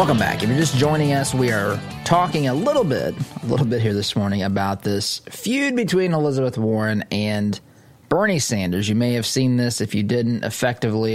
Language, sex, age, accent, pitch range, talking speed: English, male, 20-39, American, 110-140 Hz, 200 wpm